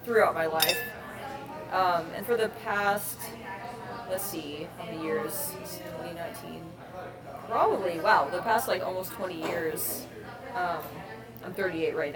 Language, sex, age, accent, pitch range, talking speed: English, female, 20-39, American, 160-195 Hz, 125 wpm